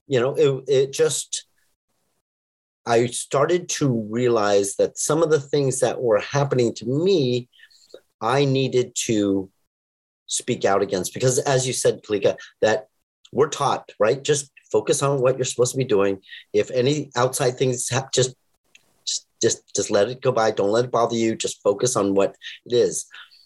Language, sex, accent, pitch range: English, male, American, 100-145 Hz